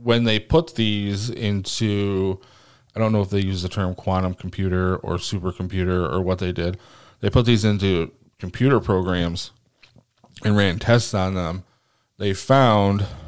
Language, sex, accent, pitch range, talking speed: English, male, American, 95-120 Hz, 155 wpm